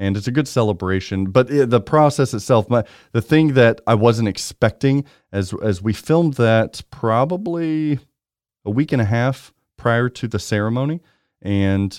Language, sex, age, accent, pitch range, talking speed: English, male, 40-59, American, 95-120 Hz, 165 wpm